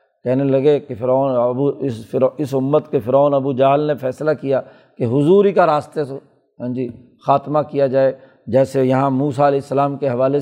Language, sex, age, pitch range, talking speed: Urdu, male, 50-69, 135-155 Hz, 180 wpm